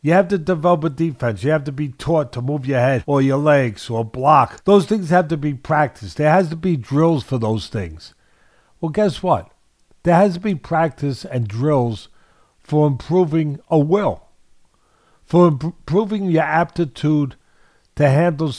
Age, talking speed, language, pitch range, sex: 50-69, 175 wpm, English, 130-180 Hz, male